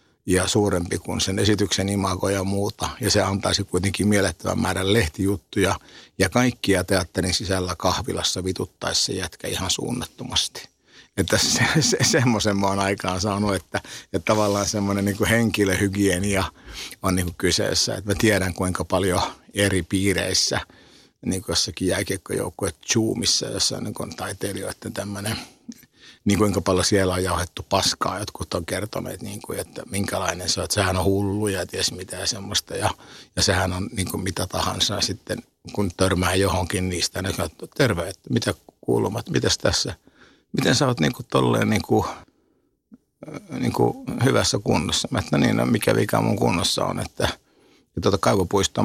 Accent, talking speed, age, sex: native, 135 wpm, 50-69, male